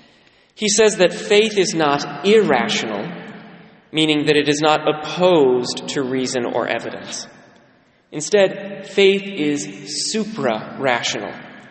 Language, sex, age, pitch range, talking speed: English, male, 20-39, 145-185 Hz, 110 wpm